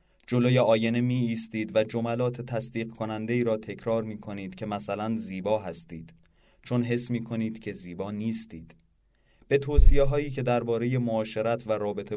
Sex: male